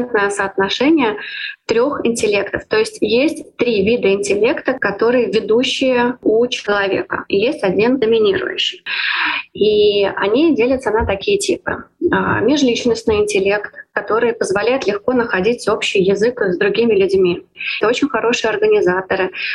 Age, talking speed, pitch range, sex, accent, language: 20-39, 115 wpm, 195-255 Hz, female, native, Russian